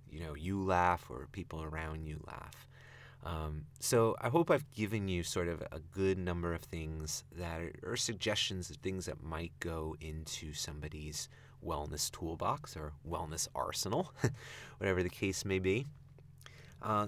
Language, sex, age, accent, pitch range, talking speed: English, male, 30-49, American, 85-120 Hz, 155 wpm